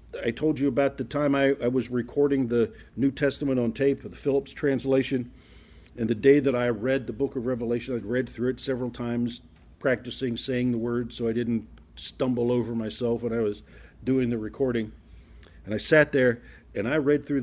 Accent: American